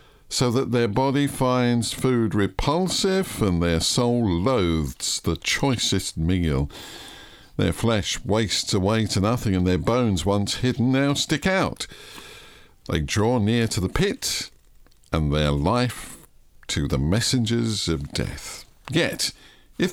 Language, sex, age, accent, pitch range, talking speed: English, male, 50-69, British, 100-140 Hz, 135 wpm